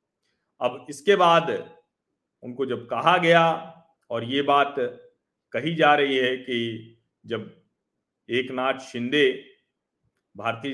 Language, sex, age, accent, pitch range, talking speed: Hindi, male, 40-59, native, 135-215 Hz, 105 wpm